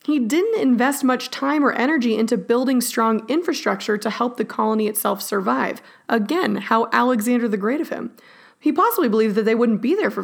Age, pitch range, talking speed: 20-39, 220-280 Hz, 195 wpm